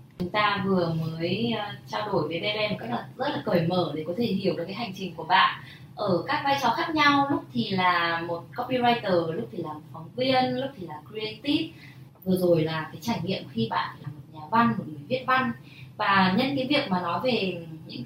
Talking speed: 230 wpm